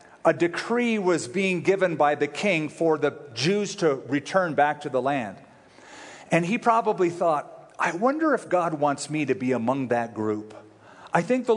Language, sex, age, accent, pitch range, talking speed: English, male, 50-69, American, 140-180 Hz, 180 wpm